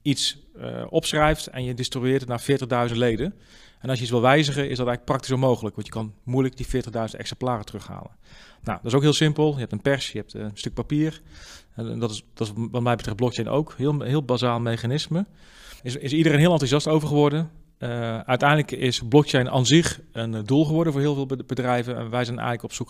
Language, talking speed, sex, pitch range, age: Dutch, 220 wpm, male, 110-135 Hz, 40-59